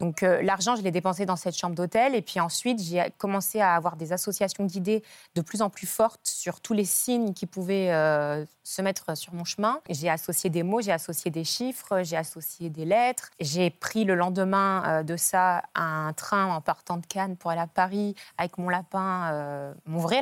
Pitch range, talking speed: 170-215 Hz, 215 wpm